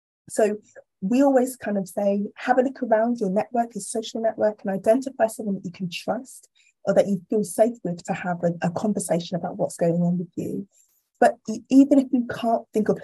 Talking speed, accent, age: 210 wpm, British, 20-39